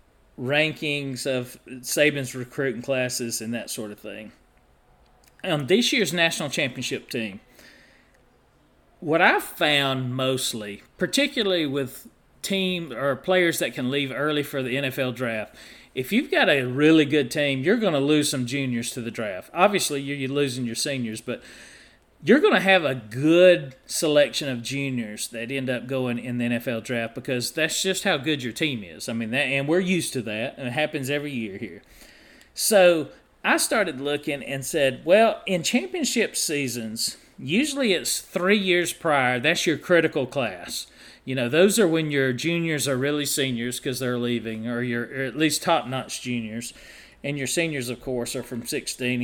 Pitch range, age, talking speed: 125-160 Hz, 40-59, 170 wpm